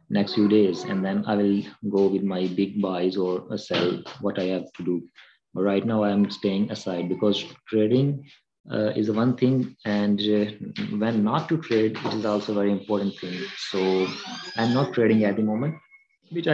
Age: 30-49